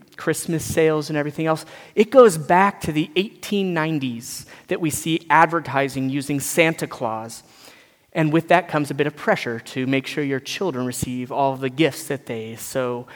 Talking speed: 175 wpm